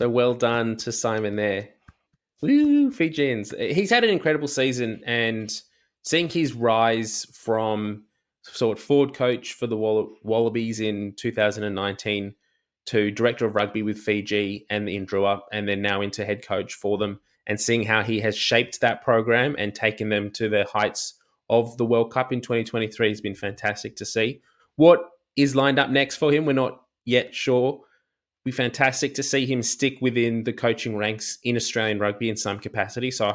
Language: English